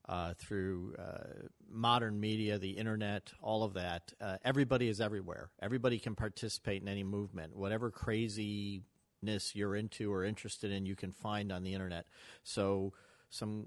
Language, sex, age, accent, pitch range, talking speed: English, male, 40-59, American, 100-115 Hz, 155 wpm